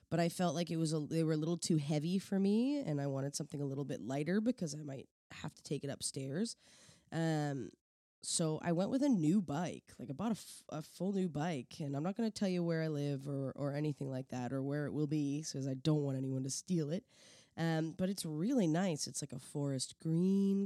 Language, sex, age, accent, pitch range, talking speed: English, female, 20-39, American, 140-185 Hz, 250 wpm